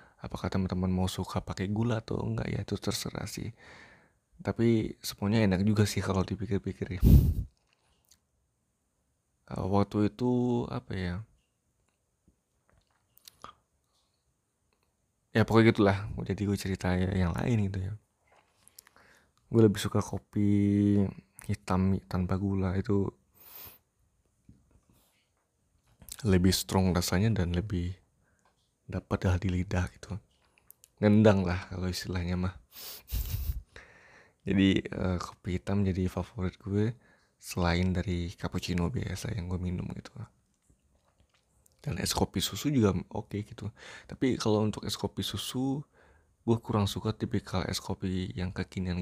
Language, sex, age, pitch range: Indonesian, male, 20-39, 90-105 Hz